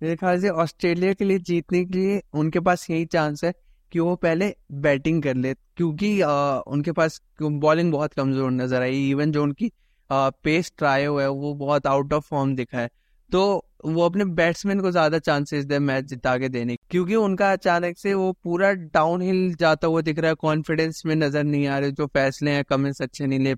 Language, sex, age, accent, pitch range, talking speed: Hindi, male, 20-39, native, 145-175 Hz, 205 wpm